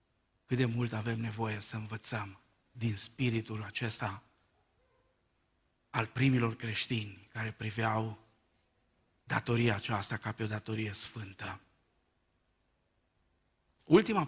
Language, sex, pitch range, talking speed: Romanian, male, 115-180 Hz, 95 wpm